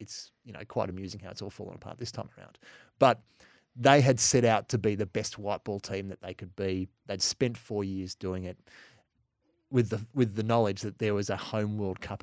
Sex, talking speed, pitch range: male, 230 wpm, 100-120 Hz